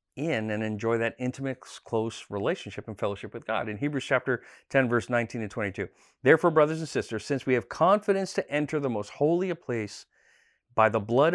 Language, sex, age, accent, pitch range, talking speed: English, male, 40-59, American, 110-155 Hz, 195 wpm